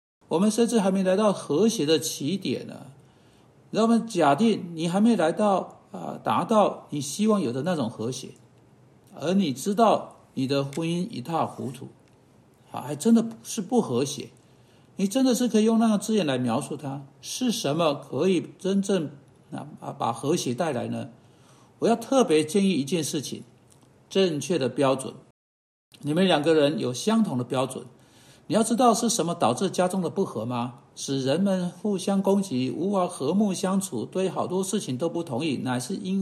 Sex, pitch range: male, 145-205 Hz